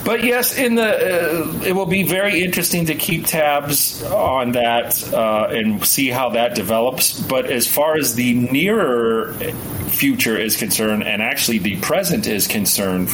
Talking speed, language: 165 wpm, English